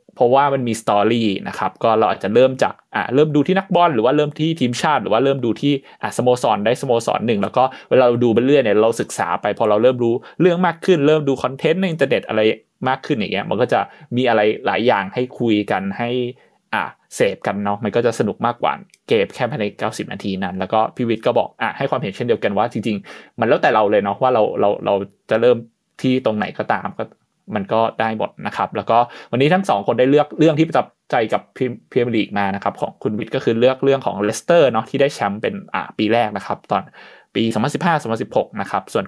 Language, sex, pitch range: Thai, male, 110-145 Hz